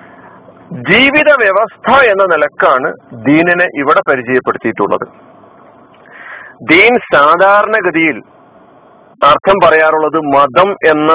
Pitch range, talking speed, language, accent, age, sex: 150-210 Hz, 70 wpm, Malayalam, native, 40-59, male